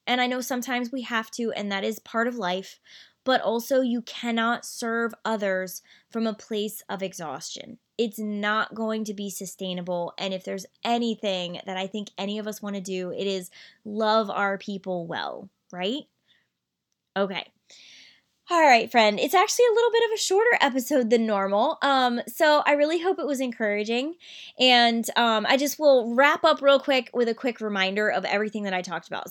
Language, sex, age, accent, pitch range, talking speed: English, female, 20-39, American, 195-250 Hz, 190 wpm